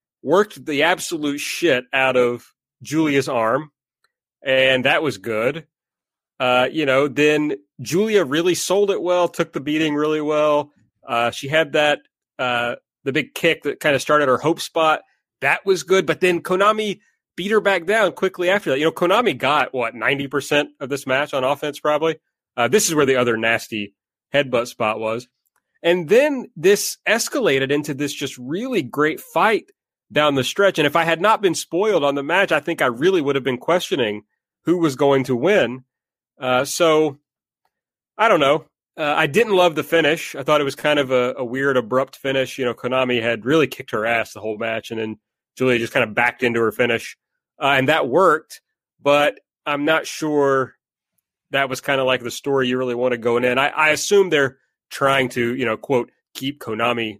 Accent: American